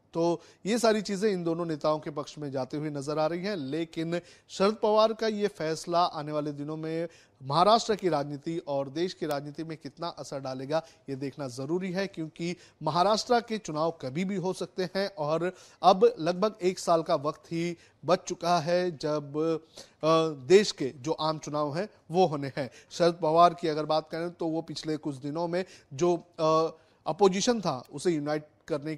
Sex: male